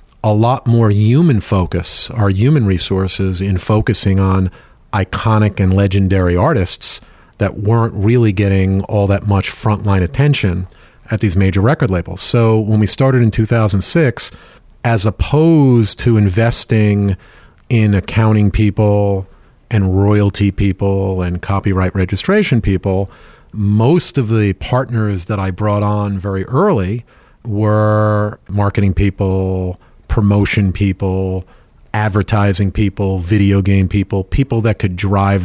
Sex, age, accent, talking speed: male, 40-59, American, 125 wpm